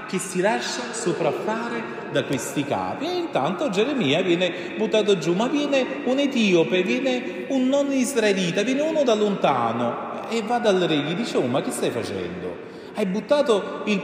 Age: 30-49